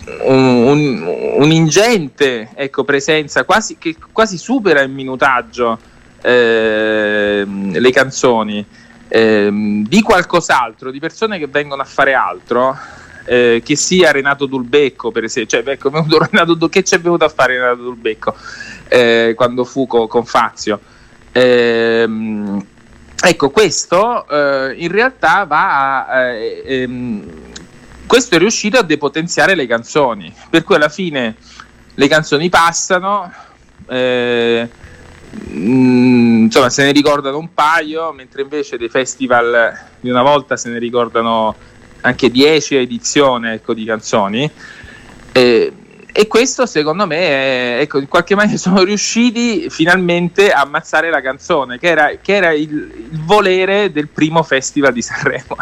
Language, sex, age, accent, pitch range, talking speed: Italian, male, 20-39, native, 120-165 Hz, 130 wpm